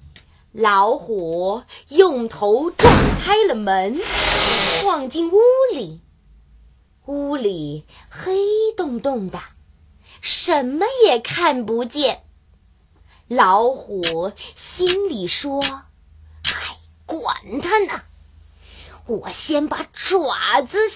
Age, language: 30-49, Chinese